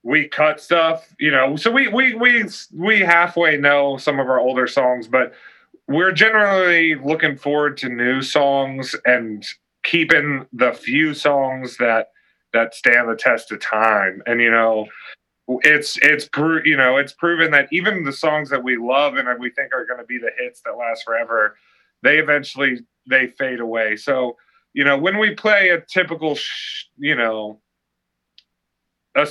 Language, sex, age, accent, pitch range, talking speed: English, male, 30-49, American, 115-155 Hz, 165 wpm